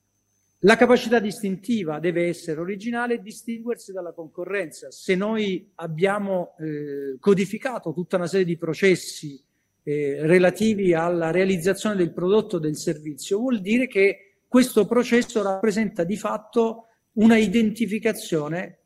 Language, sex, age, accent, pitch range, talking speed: Italian, male, 50-69, native, 160-220 Hz, 125 wpm